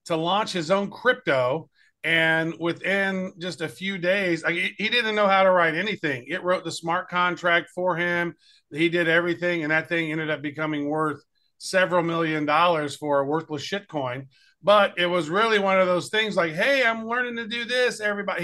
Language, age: English, 40-59